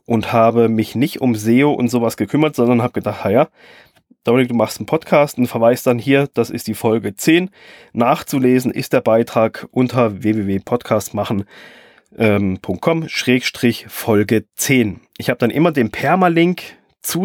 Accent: German